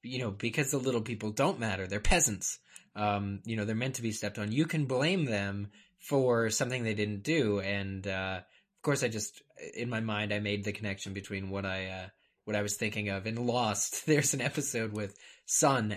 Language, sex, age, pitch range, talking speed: English, male, 20-39, 100-120 Hz, 215 wpm